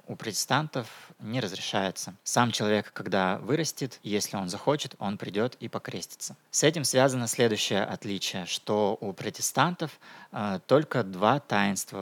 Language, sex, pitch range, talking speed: Russian, male, 95-120 Hz, 135 wpm